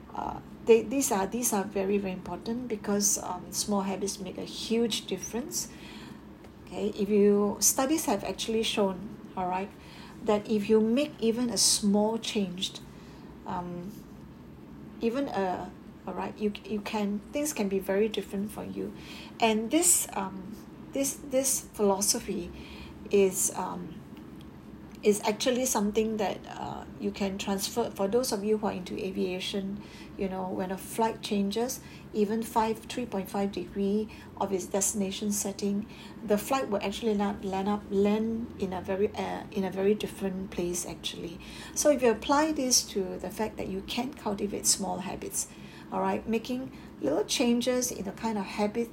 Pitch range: 195-225 Hz